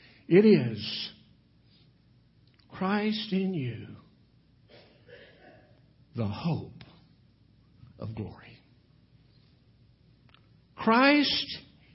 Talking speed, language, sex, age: 50 wpm, English, male, 60-79